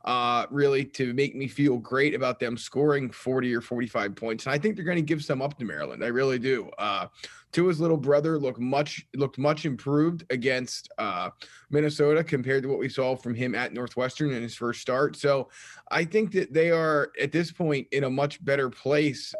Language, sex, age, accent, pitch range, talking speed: English, male, 20-39, American, 130-155 Hz, 210 wpm